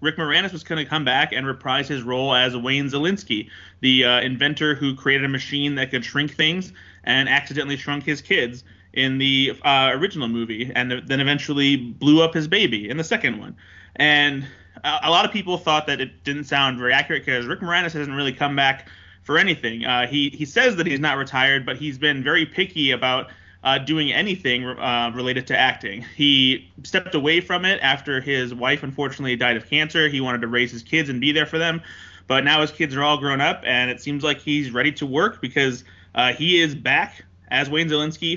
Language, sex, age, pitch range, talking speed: English, male, 30-49, 130-155 Hz, 215 wpm